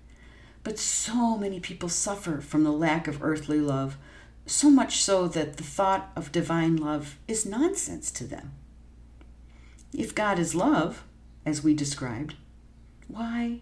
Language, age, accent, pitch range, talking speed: English, 50-69, American, 120-180 Hz, 140 wpm